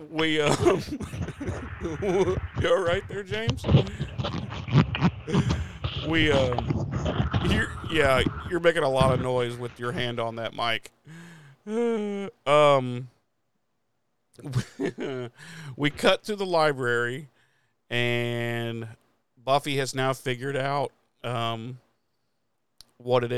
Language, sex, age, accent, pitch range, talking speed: English, male, 50-69, American, 115-145 Hz, 100 wpm